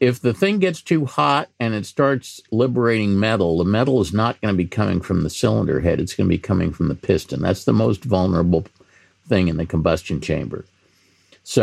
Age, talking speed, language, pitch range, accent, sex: 50-69, 210 wpm, English, 95-120 Hz, American, male